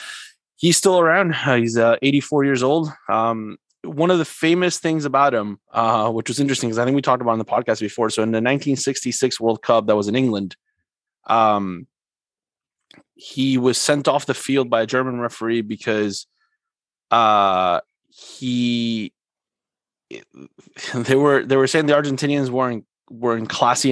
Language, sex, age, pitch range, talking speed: English, male, 20-39, 115-140 Hz, 165 wpm